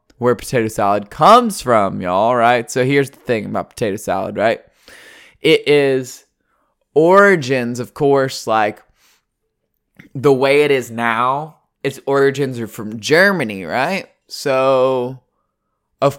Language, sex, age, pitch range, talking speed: English, male, 20-39, 120-145 Hz, 125 wpm